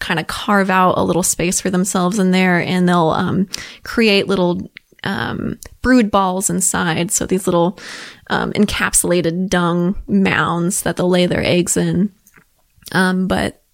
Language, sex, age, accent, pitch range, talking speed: English, female, 20-39, American, 185-210 Hz, 155 wpm